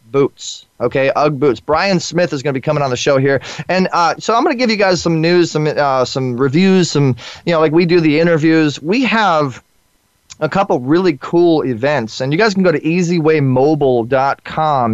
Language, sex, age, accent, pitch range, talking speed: English, male, 20-39, American, 130-165 Hz, 210 wpm